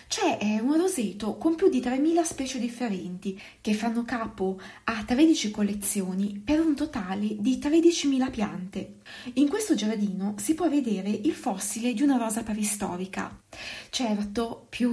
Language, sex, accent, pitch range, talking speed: Italian, female, native, 205-270 Hz, 140 wpm